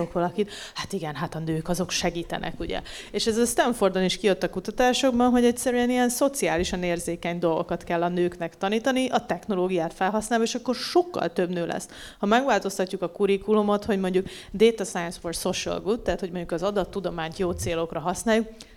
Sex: female